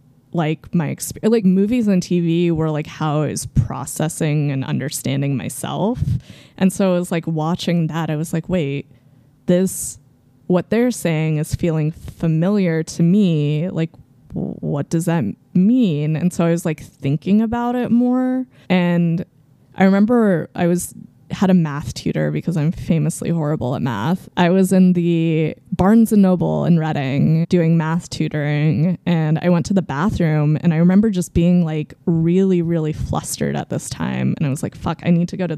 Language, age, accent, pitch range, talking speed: English, 20-39, American, 150-185 Hz, 175 wpm